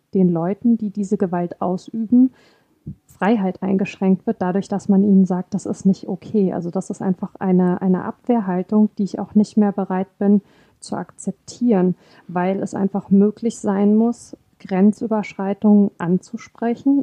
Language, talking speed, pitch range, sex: German, 150 wpm, 190-215 Hz, female